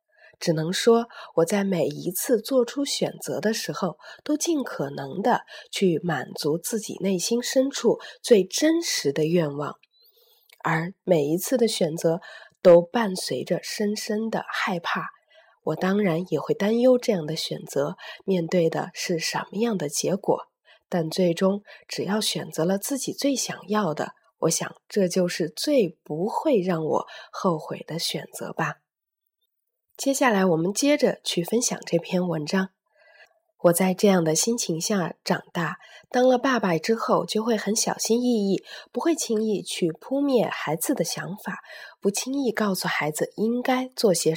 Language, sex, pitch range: Chinese, female, 175-245 Hz